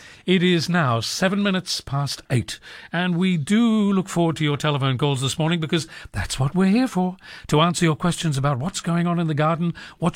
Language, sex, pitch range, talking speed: English, male, 135-175 Hz, 215 wpm